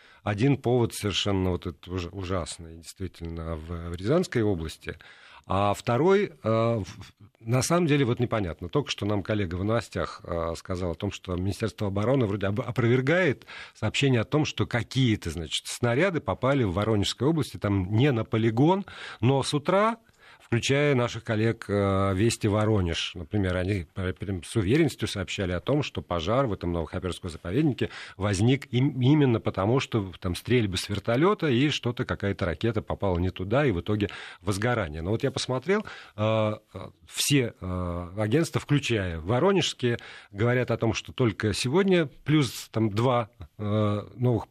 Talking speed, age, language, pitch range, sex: 140 wpm, 50-69, Russian, 95-130 Hz, male